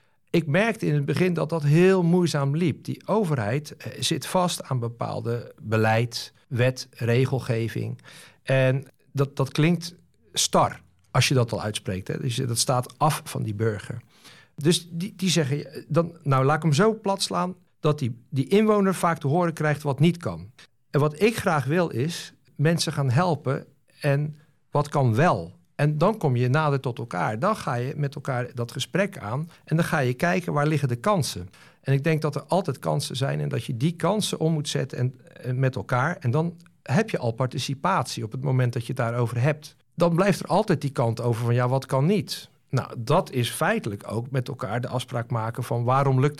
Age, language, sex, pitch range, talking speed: 50-69, Dutch, male, 125-165 Hz, 200 wpm